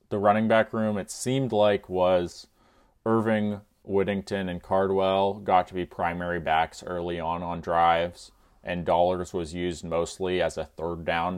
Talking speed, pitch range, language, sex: 160 wpm, 80-95 Hz, English, male